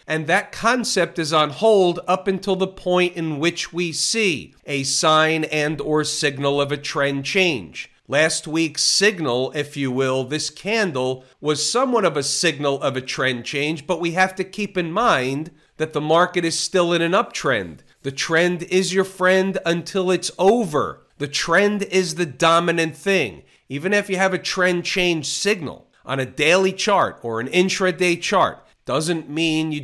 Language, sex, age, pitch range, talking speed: English, male, 40-59, 145-185 Hz, 175 wpm